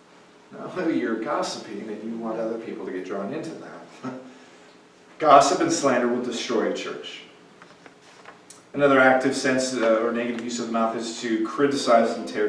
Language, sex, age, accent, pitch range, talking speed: English, male, 40-59, American, 125-160 Hz, 170 wpm